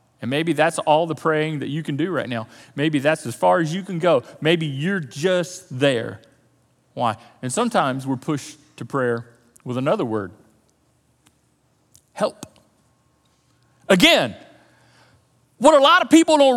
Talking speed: 150 wpm